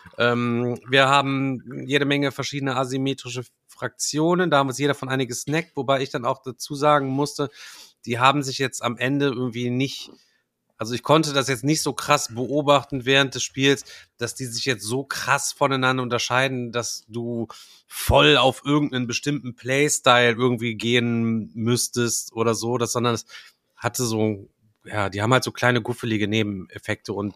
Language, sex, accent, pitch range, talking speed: German, male, German, 120-140 Hz, 170 wpm